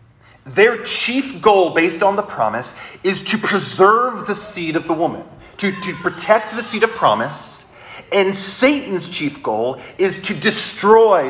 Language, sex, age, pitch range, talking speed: English, male, 30-49, 125-190 Hz, 155 wpm